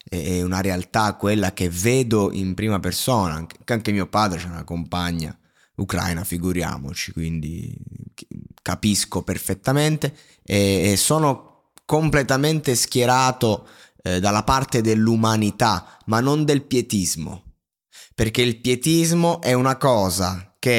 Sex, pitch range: male, 95-130 Hz